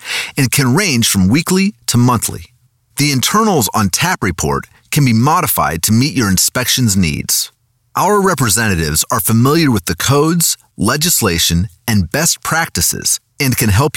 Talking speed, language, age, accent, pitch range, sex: 145 wpm, English, 30-49, American, 100-150 Hz, male